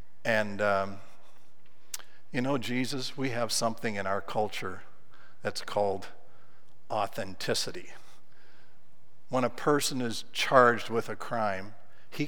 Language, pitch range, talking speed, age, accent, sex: English, 110-145 Hz, 110 wpm, 60-79, American, male